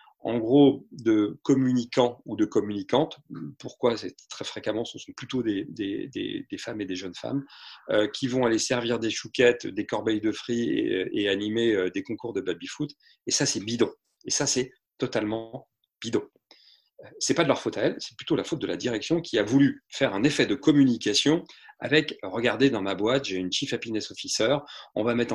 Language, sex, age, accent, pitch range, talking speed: French, male, 40-59, French, 110-145 Hz, 205 wpm